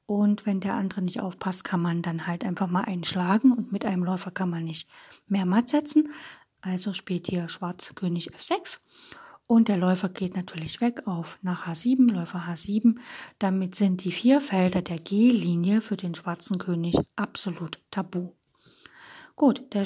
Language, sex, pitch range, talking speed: German, female, 180-235 Hz, 165 wpm